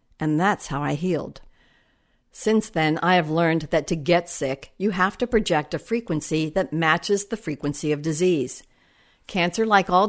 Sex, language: female, English